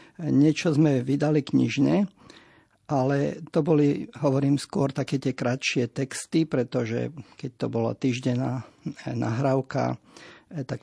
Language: Slovak